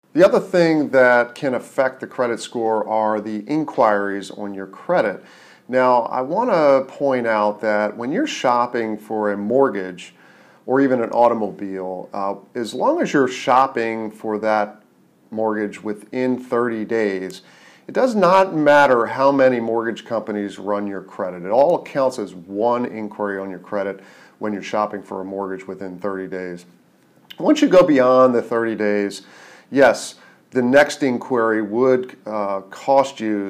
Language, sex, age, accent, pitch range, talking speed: English, male, 40-59, American, 100-125 Hz, 155 wpm